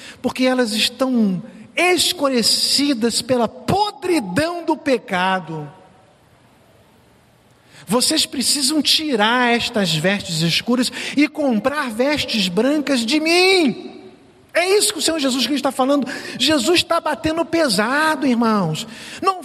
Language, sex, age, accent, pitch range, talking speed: Portuguese, male, 50-69, Brazilian, 185-265 Hz, 110 wpm